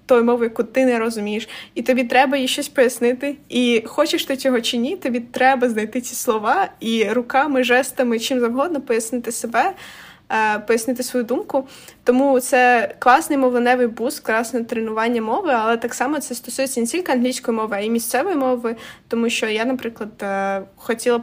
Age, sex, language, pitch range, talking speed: 20-39, female, Ukrainian, 225-255 Hz, 165 wpm